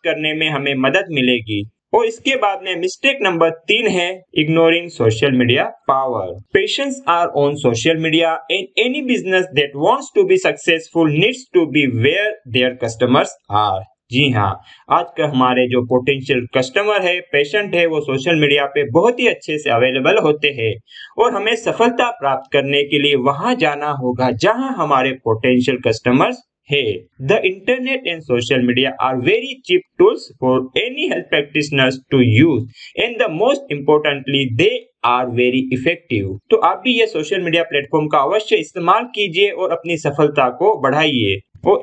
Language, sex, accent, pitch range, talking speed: Hindi, male, native, 135-205 Hz, 125 wpm